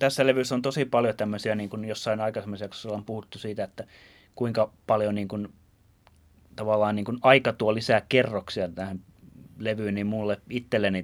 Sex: male